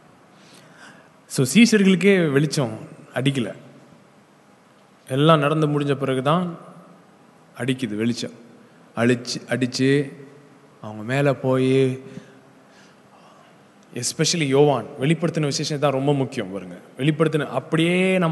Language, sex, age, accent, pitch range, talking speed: English, male, 20-39, Indian, 135-170 Hz, 95 wpm